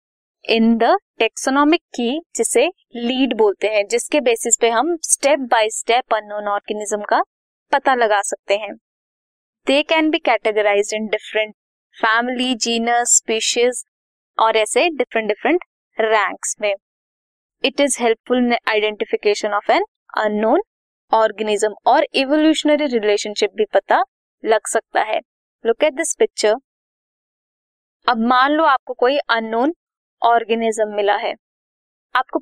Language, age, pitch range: Hindi, 20-39, 220-300 Hz